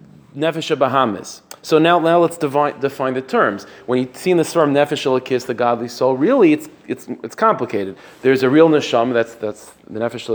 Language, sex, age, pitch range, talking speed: English, male, 30-49, 130-160 Hz, 195 wpm